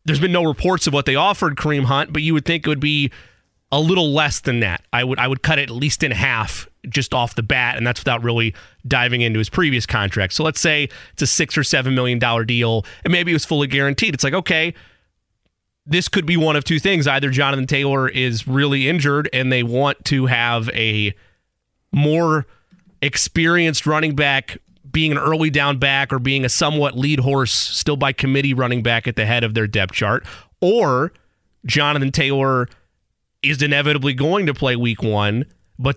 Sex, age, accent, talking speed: male, 30-49, American, 205 wpm